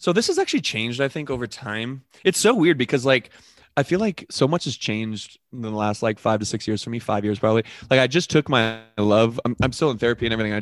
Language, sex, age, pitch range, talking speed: English, male, 20-39, 110-140 Hz, 270 wpm